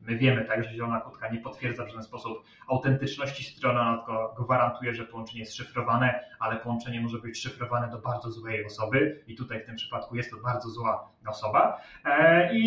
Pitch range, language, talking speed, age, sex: 120-155 Hz, Polish, 185 wpm, 30-49, male